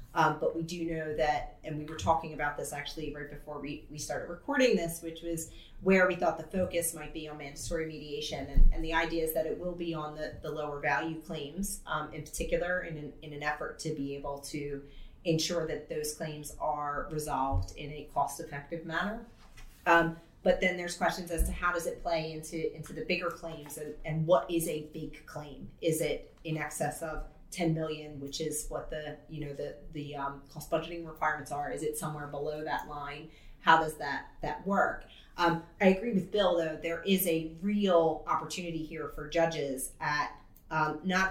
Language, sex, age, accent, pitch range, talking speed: English, female, 30-49, American, 150-170 Hz, 200 wpm